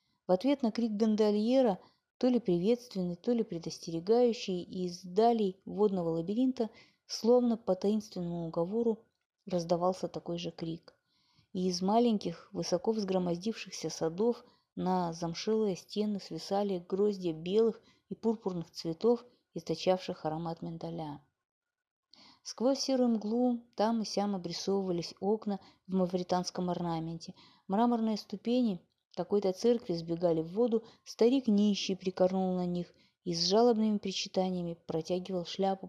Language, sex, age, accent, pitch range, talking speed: Russian, female, 30-49, native, 175-220 Hz, 120 wpm